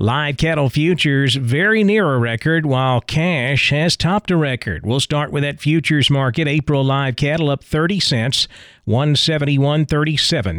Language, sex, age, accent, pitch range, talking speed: English, male, 40-59, American, 130-160 Hz, 145 wpm